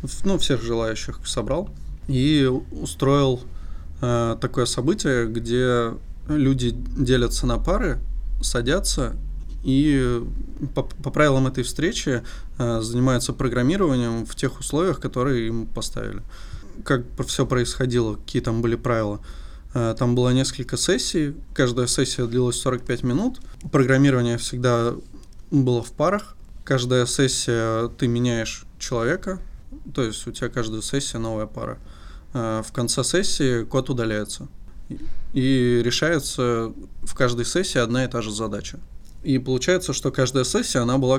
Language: Russian